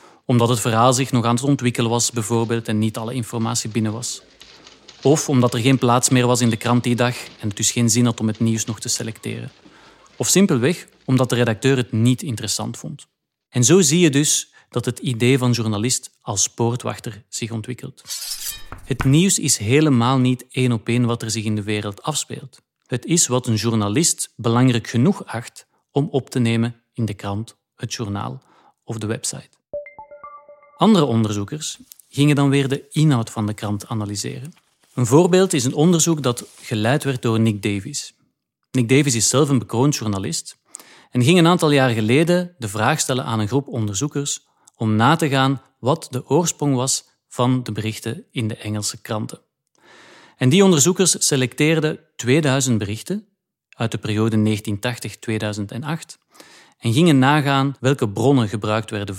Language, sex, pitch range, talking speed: Dutch, male, 115-140 Hz, 175 wpm